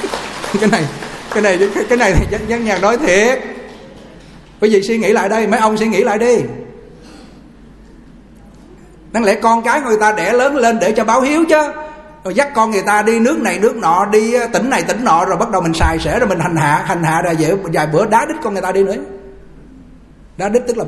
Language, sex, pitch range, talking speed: Vietnamese, male, 145-215 Hz, 225 wpm